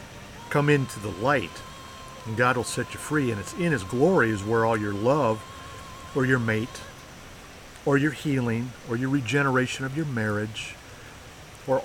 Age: 50-69